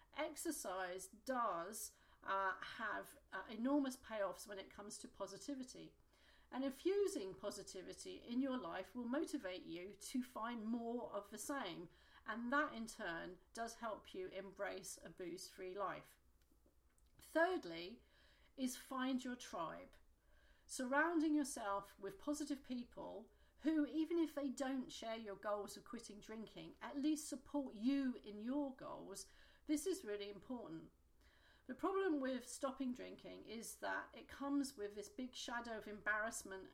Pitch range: 200-270 Hz